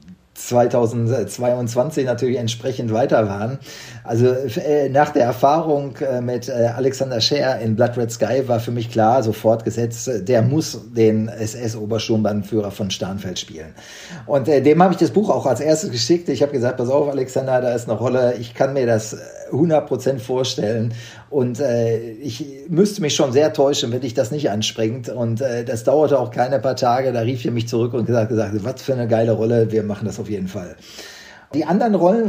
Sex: male